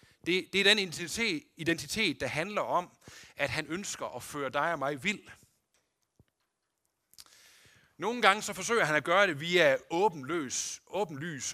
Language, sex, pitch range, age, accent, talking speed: Danish, male, 135-200 Hz, 60-79, native, 140 wpm